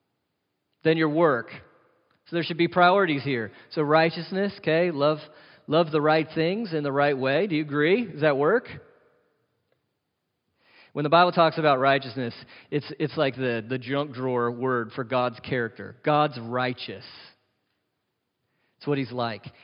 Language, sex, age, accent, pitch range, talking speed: English, male, 40-59, American, 125-160 Hz, 155 wpm